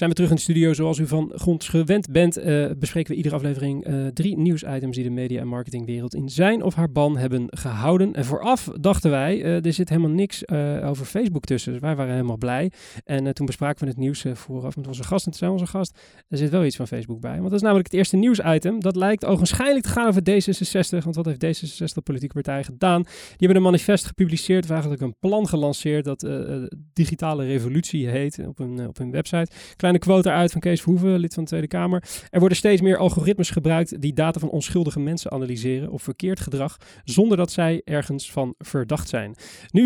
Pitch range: 135-180 Hz